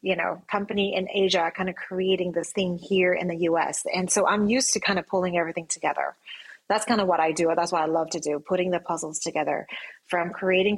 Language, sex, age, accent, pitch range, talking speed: English, female, 30-49, American, 175-205 Hz, 235 wpm